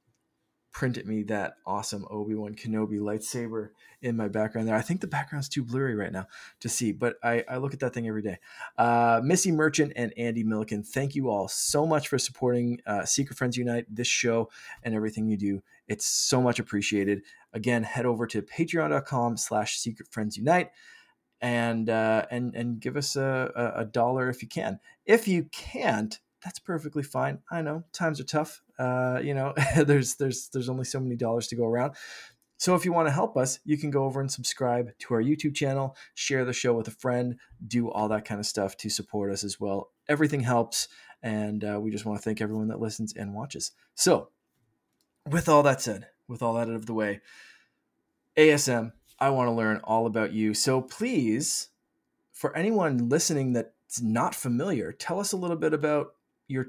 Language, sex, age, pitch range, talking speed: English, male, 20-39, 110-140 Hz, 195 wpm